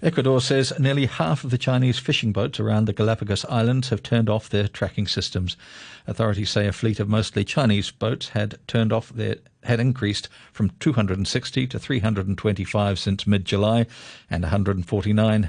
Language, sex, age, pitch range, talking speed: English, male, 50-69, 100-120 Hz, 160 wpm